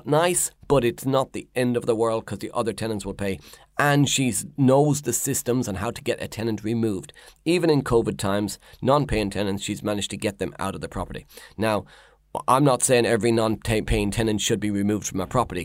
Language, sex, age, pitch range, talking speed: English, male, 30-49, 105-125 Hz, 210 wpm